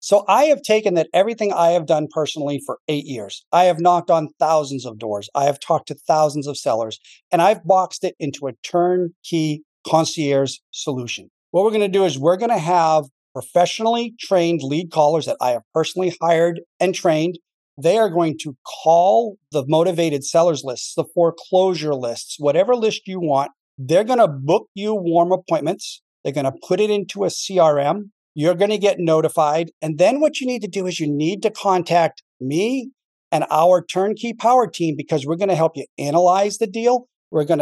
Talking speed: 195 wpm